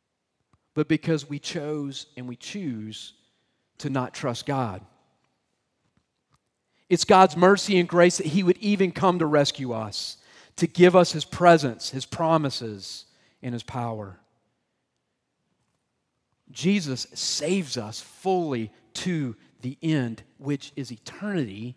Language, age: English, 40-59